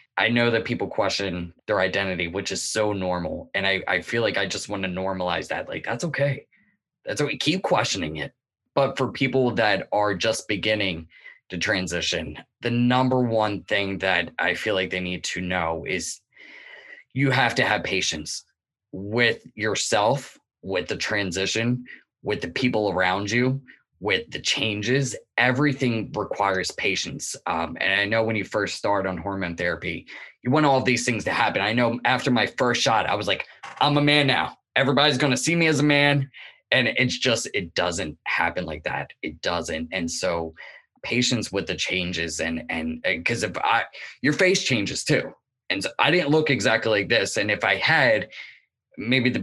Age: 20-39